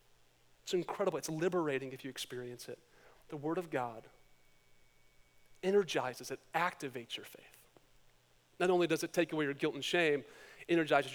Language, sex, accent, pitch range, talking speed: English, male, American, 150-195 Hz, 150 wpm